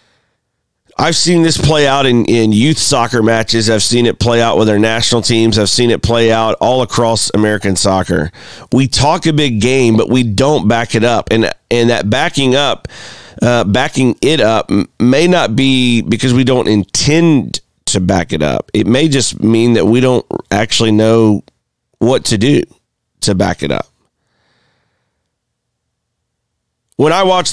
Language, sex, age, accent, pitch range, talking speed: English, male, 40-59, American, 110-130 Hz, 170 wpm